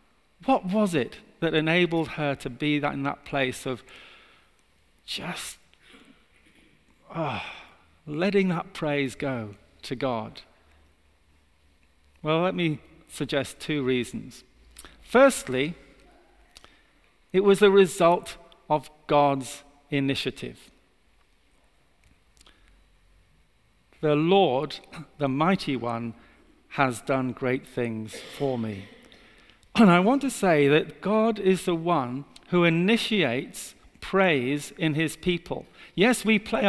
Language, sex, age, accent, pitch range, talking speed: English, male, 50-69, British, 130-185 Hz, 105 wpm